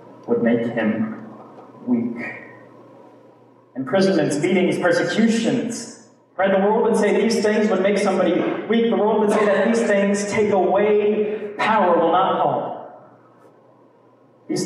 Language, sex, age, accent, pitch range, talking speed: English, male, 30-49, American, 145-200 Hz, 130 wpm